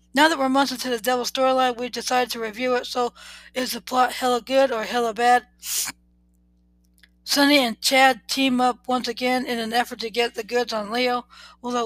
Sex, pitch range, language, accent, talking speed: female, 235-265 Hz, English, American, 205 wpm